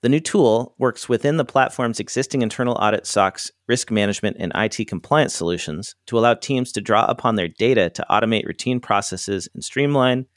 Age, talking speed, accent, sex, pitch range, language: 40-59, 180 wpm, American, male, 100-130 Hz, English